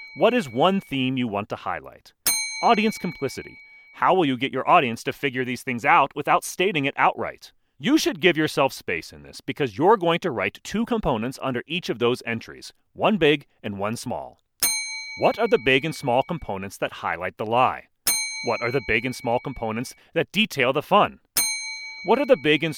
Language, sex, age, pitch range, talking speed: English, male, 40-59, 125-180 Hz, 200 wpm